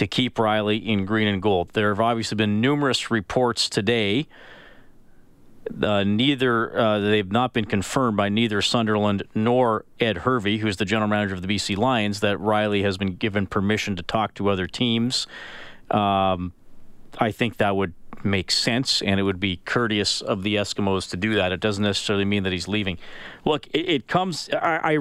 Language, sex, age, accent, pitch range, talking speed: English, male, 40-59, American, 105-120 Hz, 185 wpm